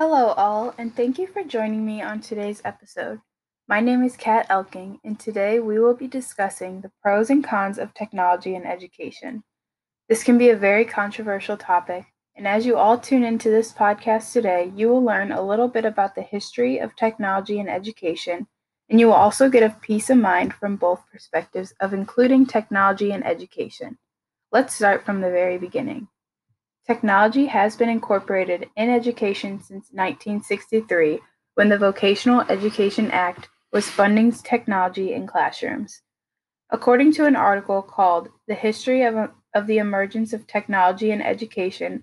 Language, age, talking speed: English, 10-29, 165 wpm